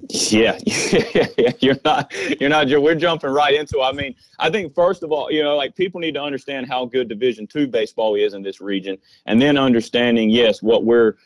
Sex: male